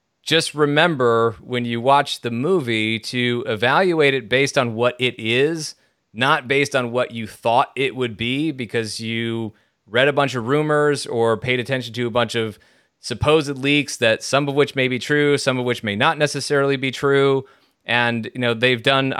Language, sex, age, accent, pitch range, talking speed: English, male, 30-49, American, 115-140 Hz, 190 wpm